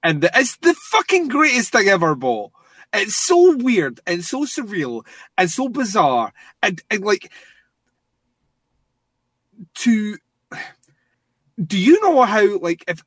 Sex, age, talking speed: male, 30-49, 120 wpm